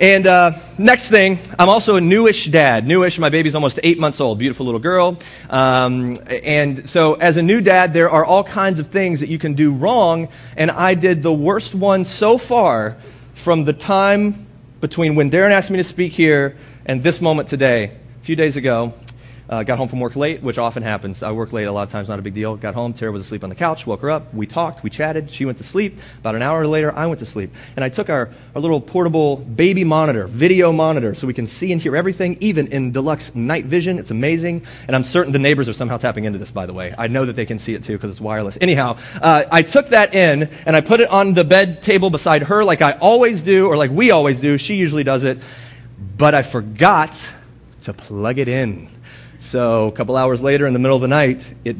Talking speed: 240 wpm